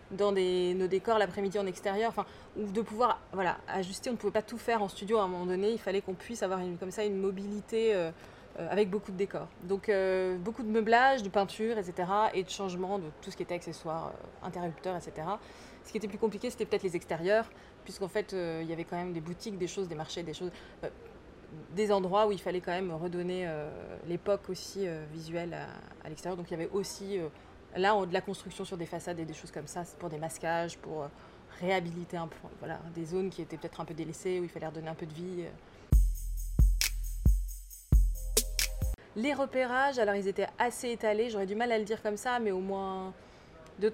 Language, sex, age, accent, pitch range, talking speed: French, female, 20-39, French, 175-210 Hz, 225 wpm